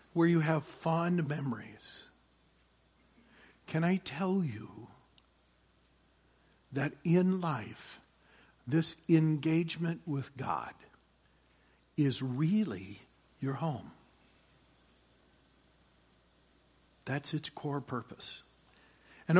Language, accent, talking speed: English, American, 75 wpm